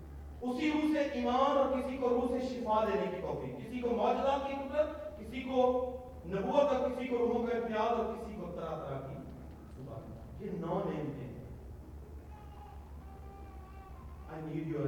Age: 40-59